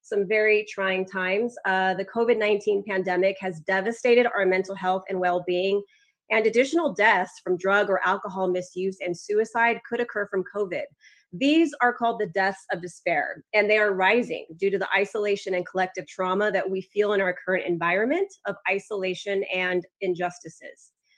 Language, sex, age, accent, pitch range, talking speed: English, female, 30-49, American, 180-225 Hz, 165 wpm